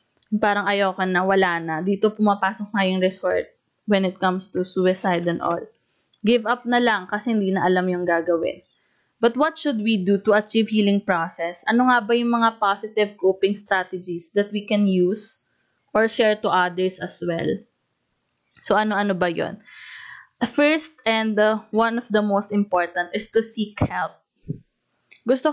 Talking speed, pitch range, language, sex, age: 165 wpm, 195-240 Hz, Filipino, female, 20-39